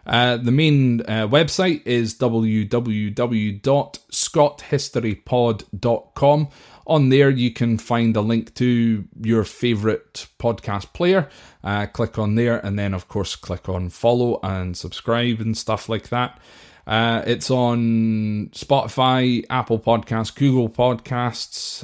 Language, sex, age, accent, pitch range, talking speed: English, male, 20-39, British, 105-135 Hz, 120 wpm